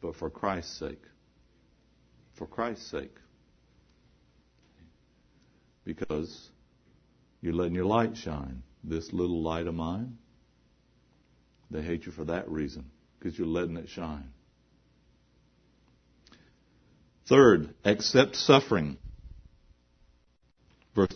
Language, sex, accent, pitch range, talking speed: English, male, American, 80-110 Hz, 95 wpm